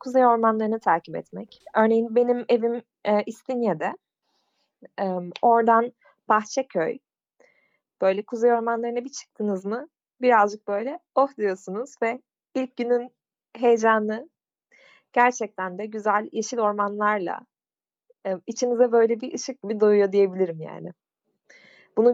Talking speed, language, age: 110 wpm, Turkish, 20-39